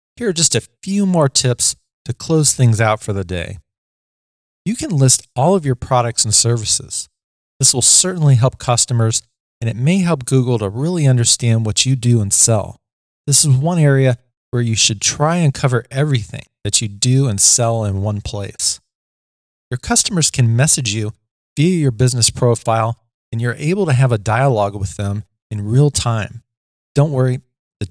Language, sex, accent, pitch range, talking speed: English, male, American, 105-135 Hz, 180 wpm